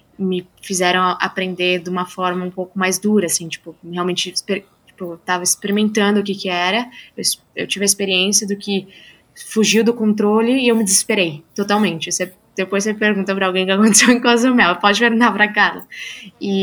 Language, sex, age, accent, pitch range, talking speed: Portuguese, female, 10-29, Brazilian, 180-210 Hz, 190 wpm